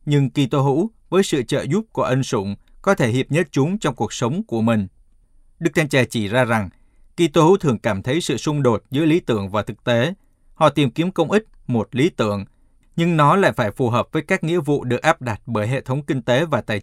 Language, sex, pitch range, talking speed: Vietnamese, male, 115-160 Hz, 245 wpm